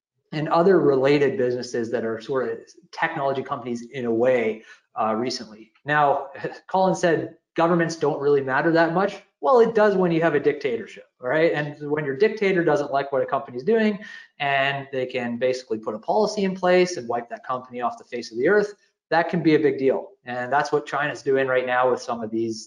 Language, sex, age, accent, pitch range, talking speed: English, male, 30-49, American, 125-170 Hz, 210 wpm